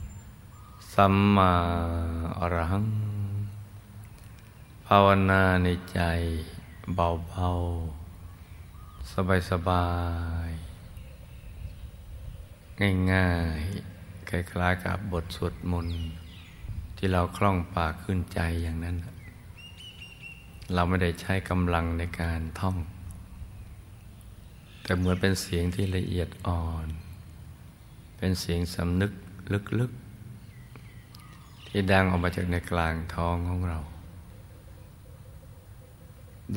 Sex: male